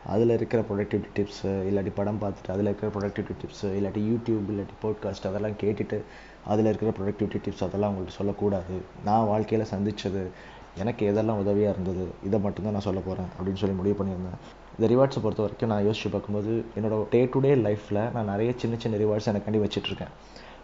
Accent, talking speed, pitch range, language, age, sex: native, 175 wpm, 100-110 Hz, Tamil, 20-39, male